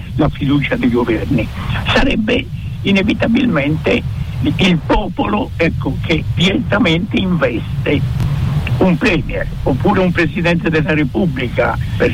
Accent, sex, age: native, male, 60-79